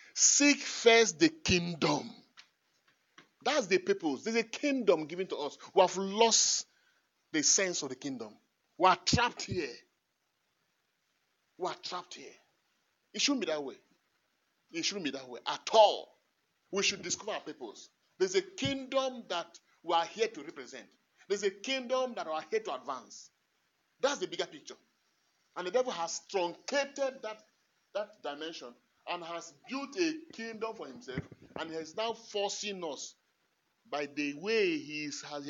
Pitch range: 165-265 Hz